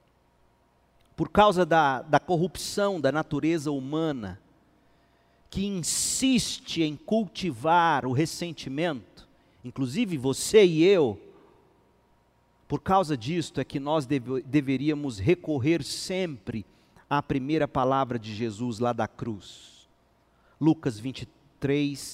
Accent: Brazilian